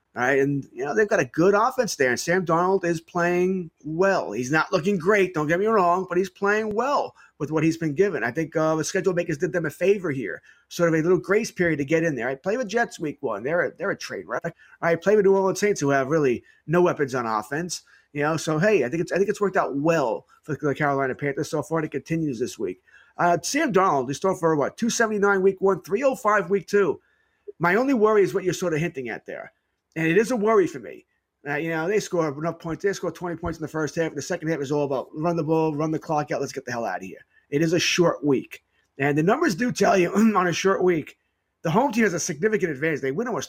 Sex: male